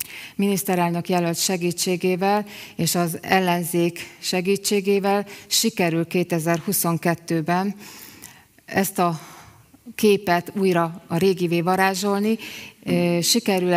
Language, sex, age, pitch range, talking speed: Hungarian, female, 30-49, 175-200 Hz, 75 wpm